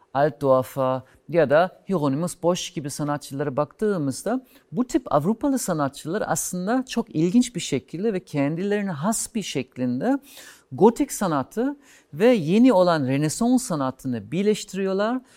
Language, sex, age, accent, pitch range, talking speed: Turkish, male, 50-69, native, 140-220 Hz, 120 wpm